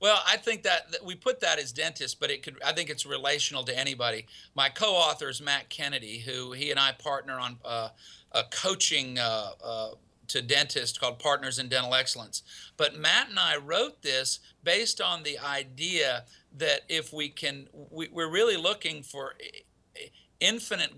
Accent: American